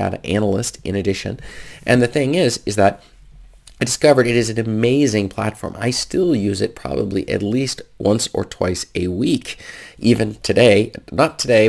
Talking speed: 165 wpm